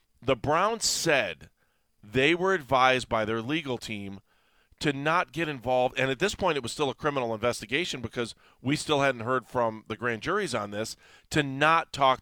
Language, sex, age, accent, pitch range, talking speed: English, male, 40-59, American, 115-160 Hz, 185 wpm